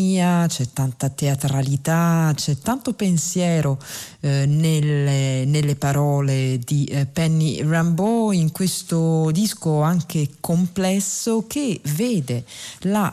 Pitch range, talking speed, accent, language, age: 145-190 Hz, 100 wpm, native, Italian, 40-59